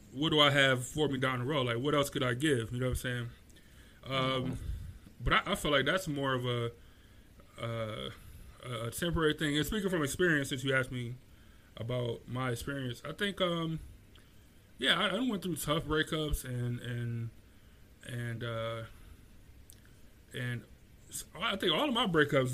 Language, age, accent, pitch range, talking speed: English, 20-39, American, 120-150 Hz, 175 wpm